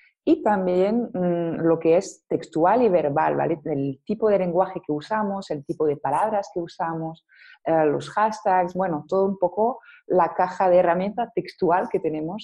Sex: female